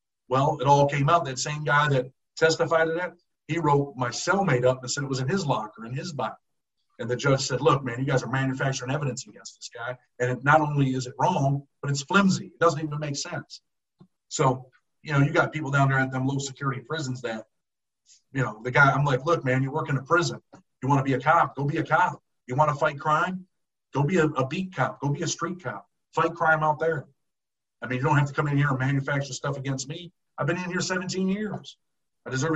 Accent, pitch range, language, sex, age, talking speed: American, 130-160 Hz, English, male, 50-69, 245 wpm